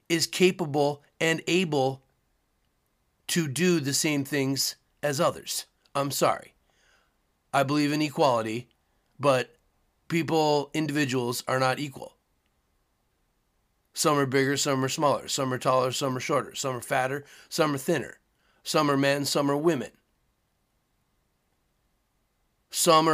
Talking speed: 125 wpm